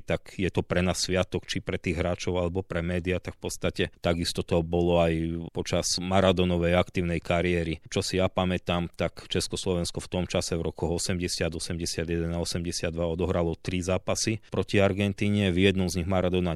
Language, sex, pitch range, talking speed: Slovak, male, 85-95 Hz, 180 wpm